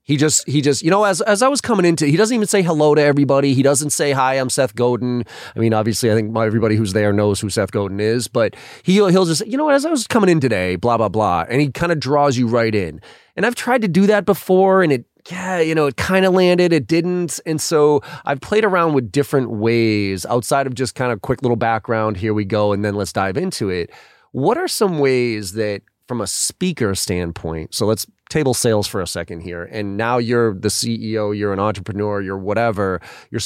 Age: 30-49